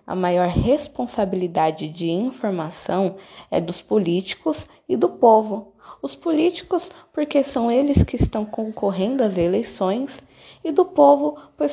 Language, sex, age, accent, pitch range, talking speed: Portuguese, female, 20-39, Brazilian, 200-260 Hz, 130 wpm